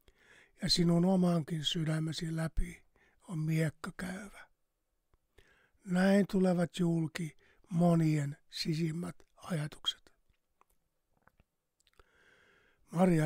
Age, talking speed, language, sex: 60-79, 70 wpm, Finnish, male